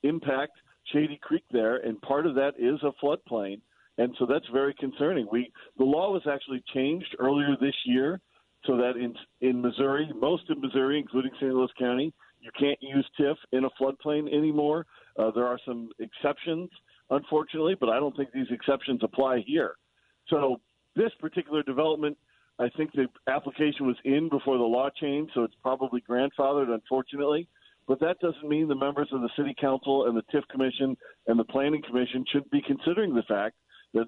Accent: American